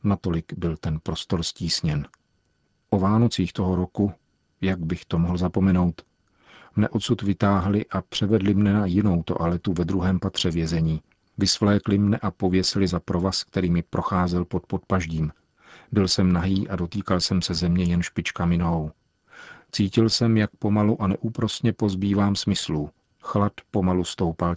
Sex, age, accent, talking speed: male, 40-59, native, 145 wpm